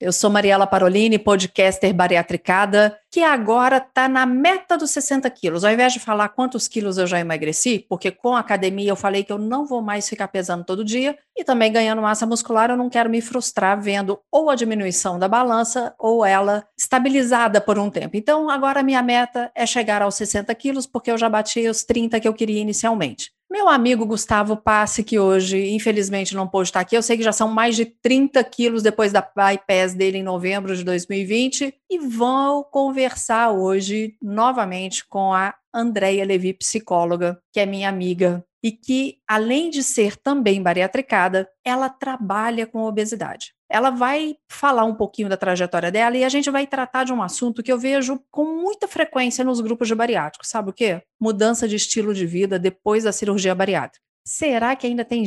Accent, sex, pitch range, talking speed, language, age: Brazilian, female, 200-250 Hz, 190 wpm, Portuguese, 40-59